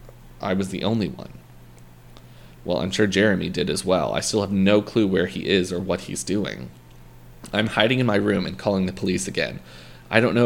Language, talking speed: English, 210 wpm